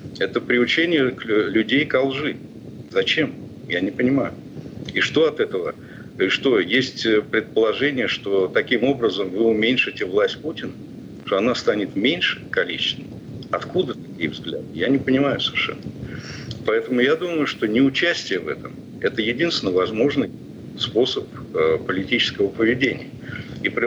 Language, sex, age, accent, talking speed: Russian, male, 50-69, native, 130 wpm